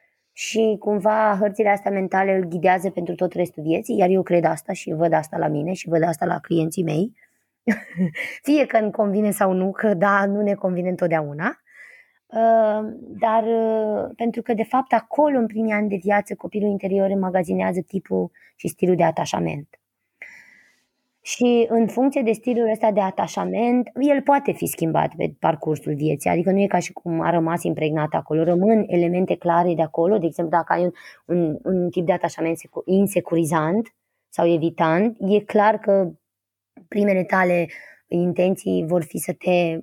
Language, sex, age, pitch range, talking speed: Romanian, female, 20-39, 170-210 Hz, 165 wpm